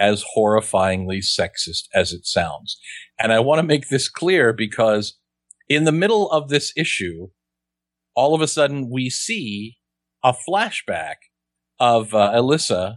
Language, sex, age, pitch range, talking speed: English, male, 40-59, 105-140 Hz, 145 wpm